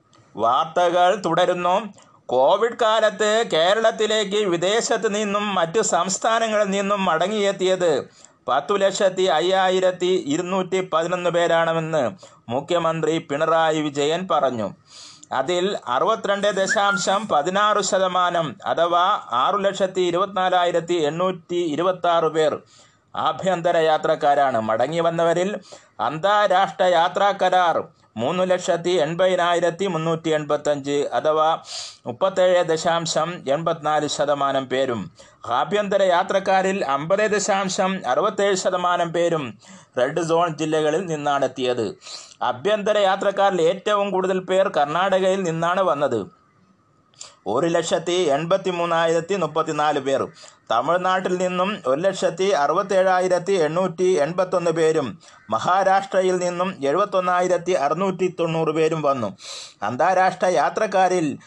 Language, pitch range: Malayalam, 160-195 Hz